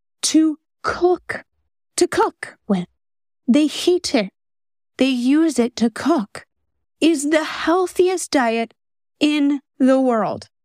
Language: English